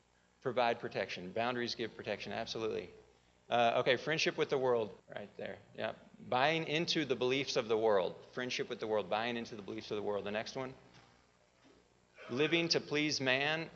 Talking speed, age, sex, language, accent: 175 wpm, 40-59, male, English, American